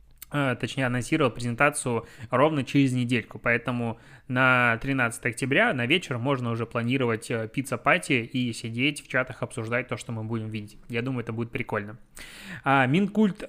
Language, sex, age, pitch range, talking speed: Russian, male, 20-39, 125-155 Hz, 140 wpm